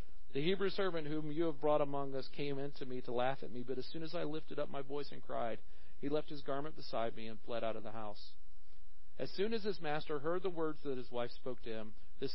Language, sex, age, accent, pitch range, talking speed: English, male, 40-59, American, 120-155 Hz, 265 wpm